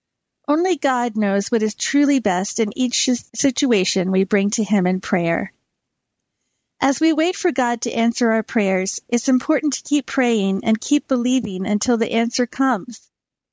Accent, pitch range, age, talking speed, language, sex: American, 215-275 Hz, 50-69, 165 wpm, English, female